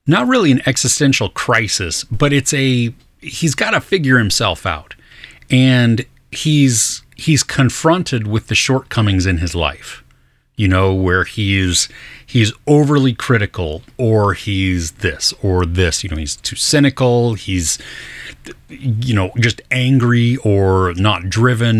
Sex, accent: male, American